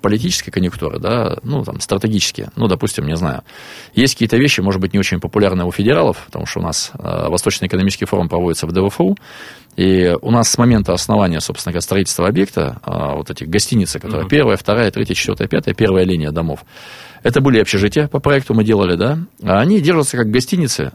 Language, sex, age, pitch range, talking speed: Russian, male, 20-39, 90-115 Hz, 180 wpm